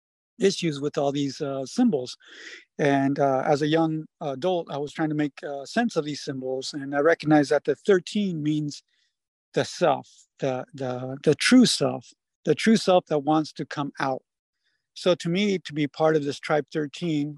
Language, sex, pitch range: English, male, 140-175 Hz